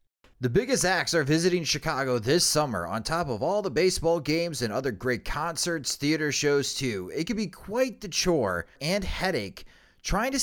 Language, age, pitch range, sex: English, 30-49, 135-200 Hz, male